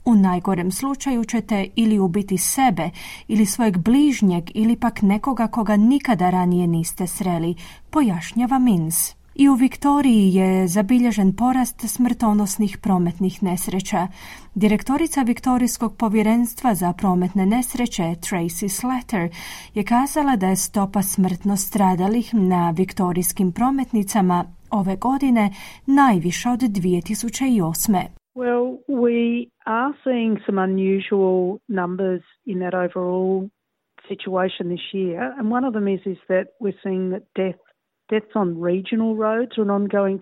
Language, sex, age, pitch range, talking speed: Croatian, female, 30-49, 190-245 Hz, 120 wpm